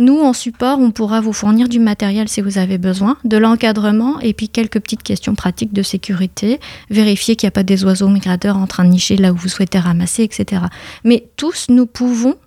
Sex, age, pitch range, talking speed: female, 30-49, 200-245 Hz, 215 wpm